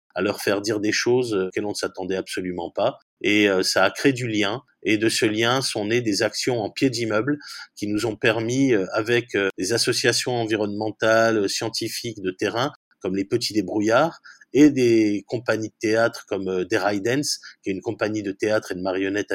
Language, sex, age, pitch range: French, male, 30-49, 105-135 Hz